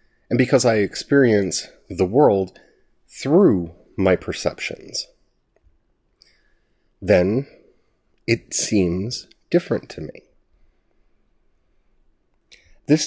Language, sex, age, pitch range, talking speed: English, male, 30-49, 100-140 Hz, 75 wpm